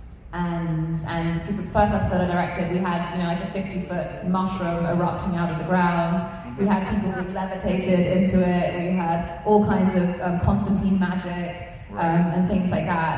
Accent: British